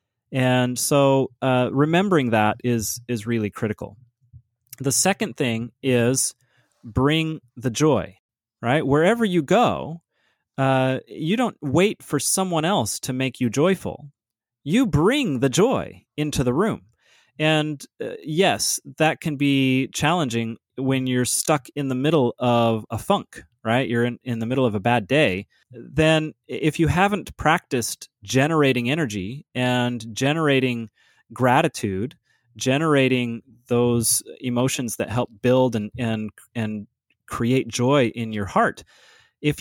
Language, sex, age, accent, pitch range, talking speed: English, male, 30-49, American, 115-150 Hz, 135 wpm